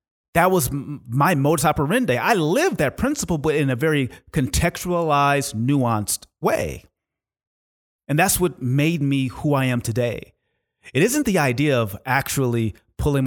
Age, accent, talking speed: 30-49, American, 145 wpm